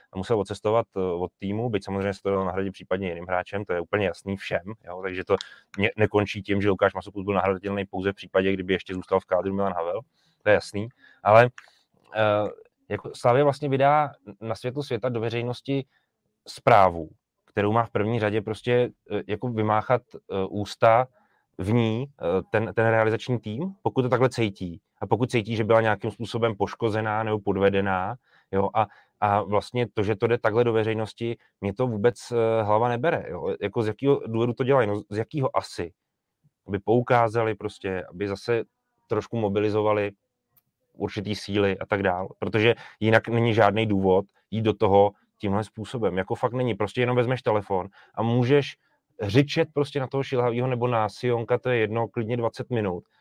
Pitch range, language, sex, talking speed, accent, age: 100-120 Hz, Czech, male, 175 wpm, native, 20-39